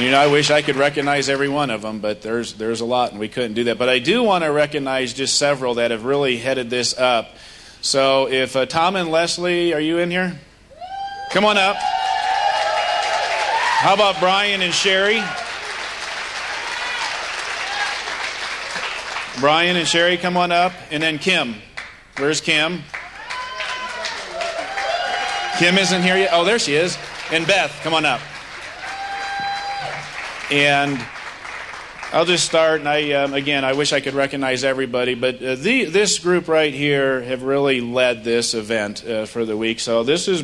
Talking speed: 165 wpm